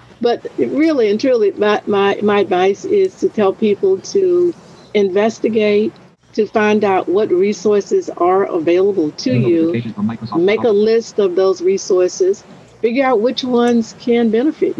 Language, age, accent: English, 60-79, American